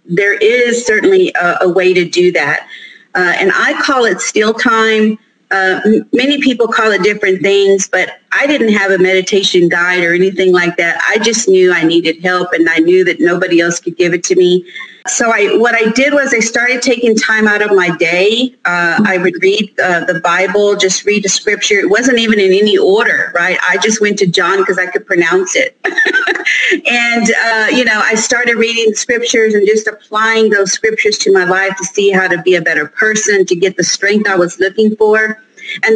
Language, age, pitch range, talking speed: English, 40-59, 185-225 Hz, 210 wpm